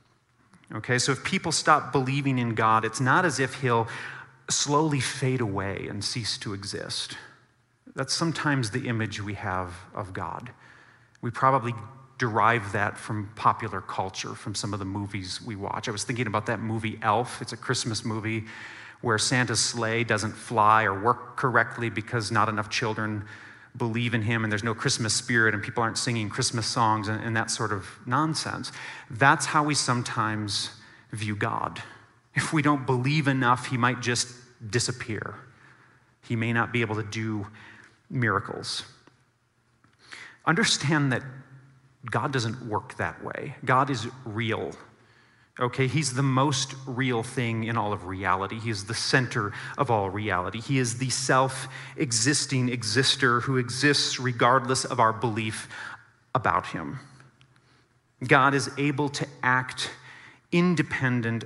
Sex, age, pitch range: male, 30-49, 110-135 Hz